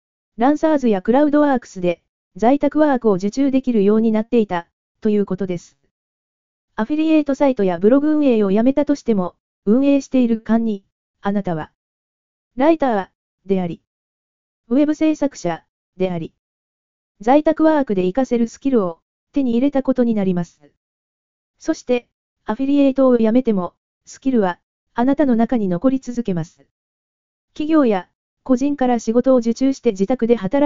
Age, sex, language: 20-39, female, Japanese